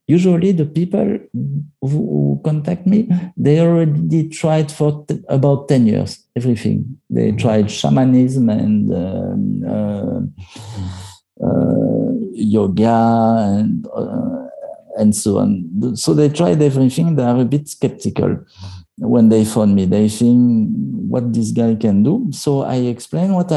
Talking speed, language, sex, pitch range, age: 130 wpm, English, male, 125-180 Hz, 50-69